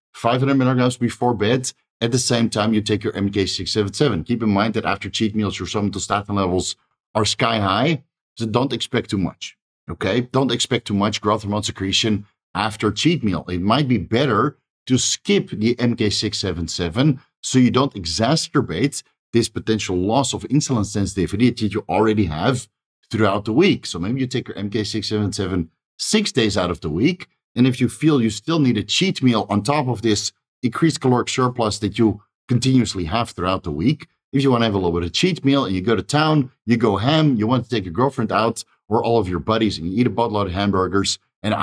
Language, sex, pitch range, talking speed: English, male, 105-130 Hz, 200 wpm